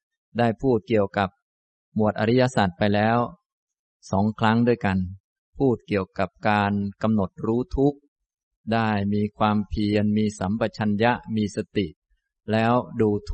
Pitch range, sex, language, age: 95-115 Hz, male, Thai, 20-39